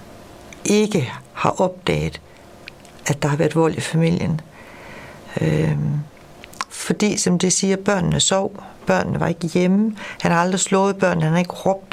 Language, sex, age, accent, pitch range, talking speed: Danish, female, 60-79, native, 155-185 Hz, 150 wpm